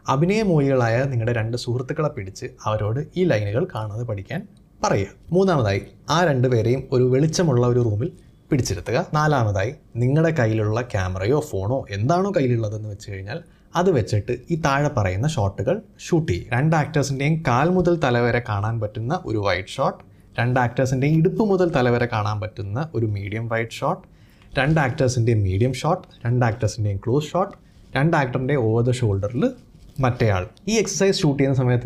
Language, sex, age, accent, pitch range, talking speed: Malayalam, male, 20-39, native, 110-155 Hz, 145 wpm